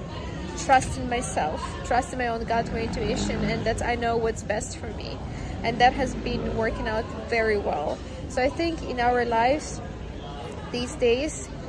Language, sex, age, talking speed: English, female, 20-39, 175 wpm